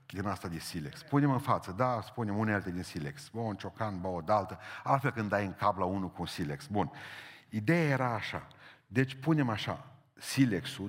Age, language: 50-69, Romanian